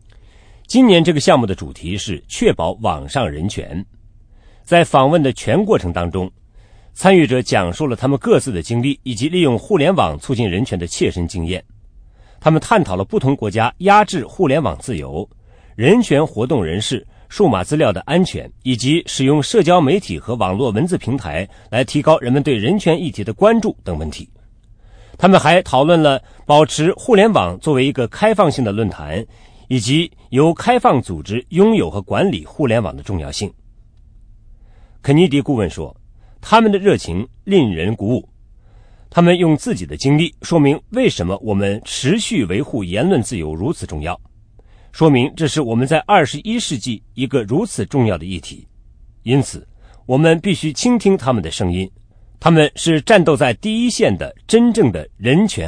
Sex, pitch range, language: male, 105-160 Hz, English